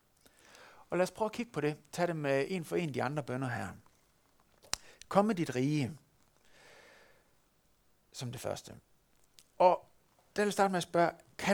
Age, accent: 60-79, native